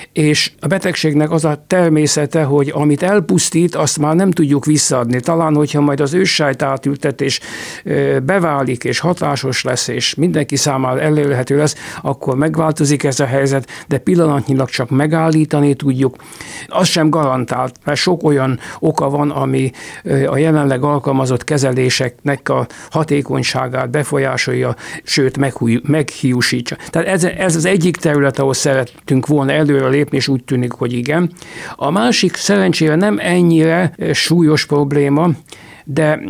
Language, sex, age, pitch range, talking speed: Hungarian, male, 60-79, 140-160 Hz, 130 wpm